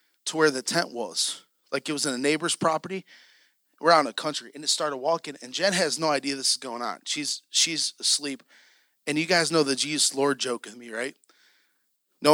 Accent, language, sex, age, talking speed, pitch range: American, English, male, 30-49, 220 wpm, 150-200 Hz